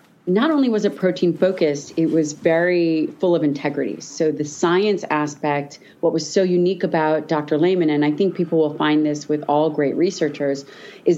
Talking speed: 185 wpm